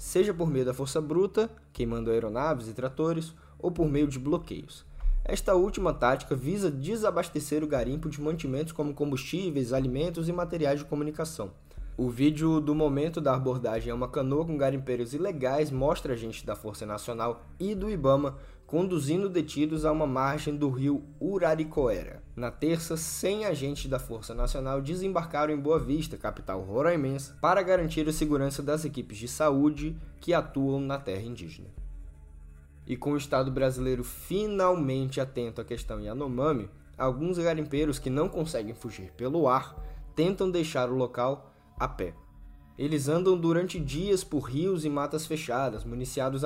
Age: 10-29